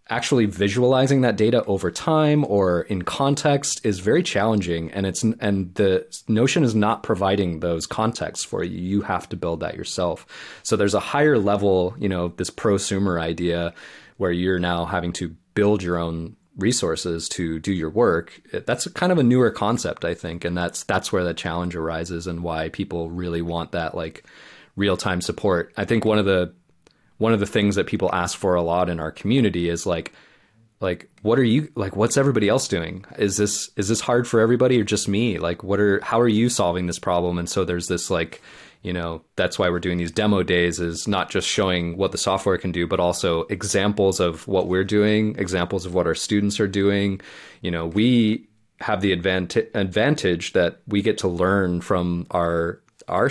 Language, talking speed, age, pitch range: English, 200 wpm, 20-39, 85-105 Hz